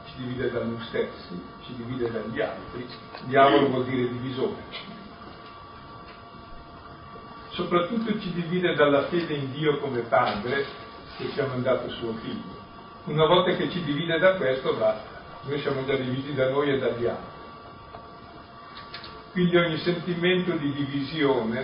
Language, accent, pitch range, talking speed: Italian, native, 130-175 Hz, 140 wpm